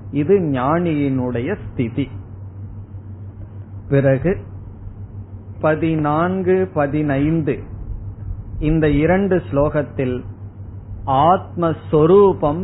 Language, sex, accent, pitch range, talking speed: Tamil, male, native, 100-160 Hz, 45 wpm